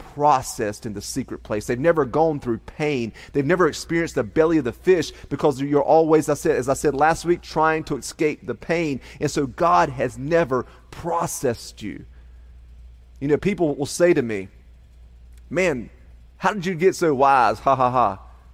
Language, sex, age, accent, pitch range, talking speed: English, male, 30-49, American, 105-150 Hz, 185 wpm